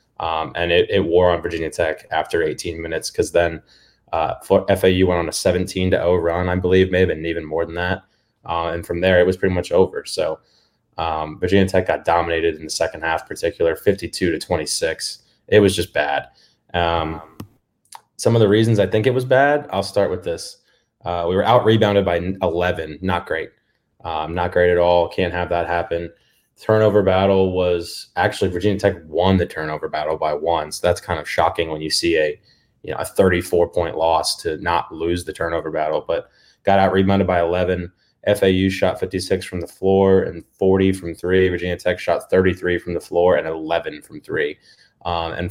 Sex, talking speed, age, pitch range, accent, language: male, 200 wpm, 20-39, 85-105 Hz, American, English